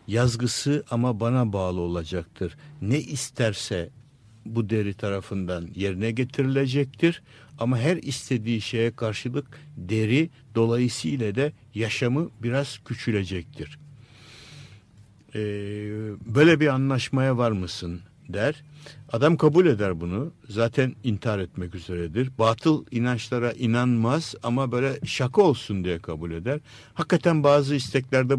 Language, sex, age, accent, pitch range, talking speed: Turkish, male, 60-79, native, 110-140 Hz, 110 wpm